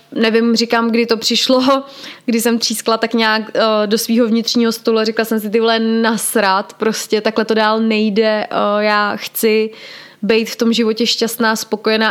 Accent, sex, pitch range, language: native, female, 215-235 Hz, Czech